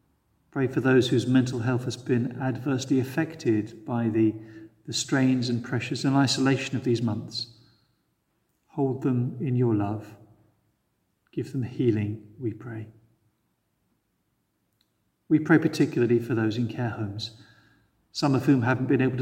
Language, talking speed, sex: English, 140 wpm, male